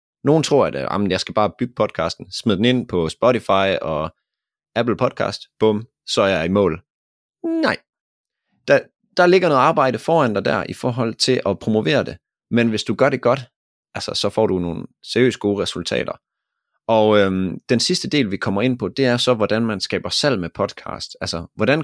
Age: 30-49